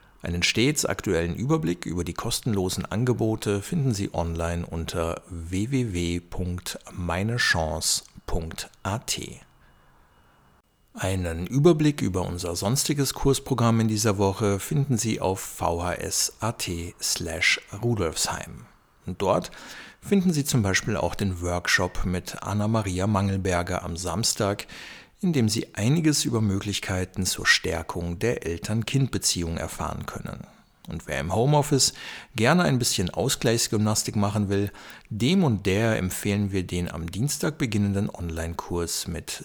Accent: German